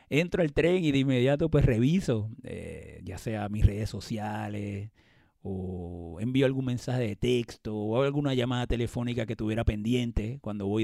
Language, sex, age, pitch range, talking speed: Spanish, male, 30-49, 105-125 Hz, 160 wpm